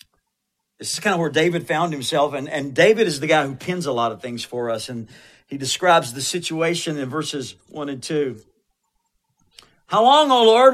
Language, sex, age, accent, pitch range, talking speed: English, male, 50-69, American, 130-190 Hz, 205 wpm